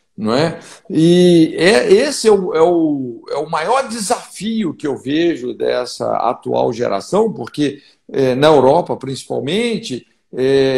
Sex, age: male, 60-79